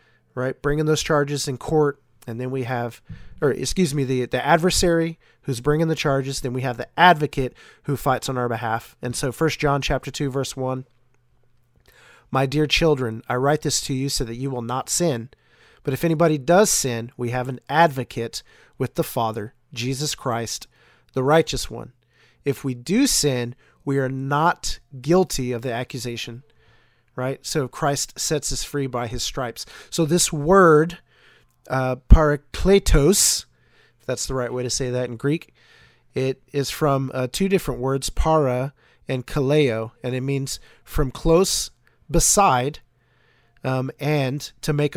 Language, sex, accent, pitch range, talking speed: English, male, American, 125-150 Hz, 165 wpm